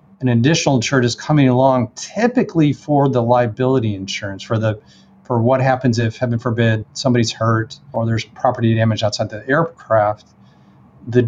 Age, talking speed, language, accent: 40-59, 155 wpm, English, American